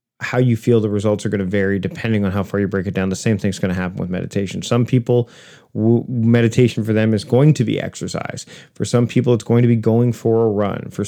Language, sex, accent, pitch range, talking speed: English, male, American, 105-125 Hz, 255 wpm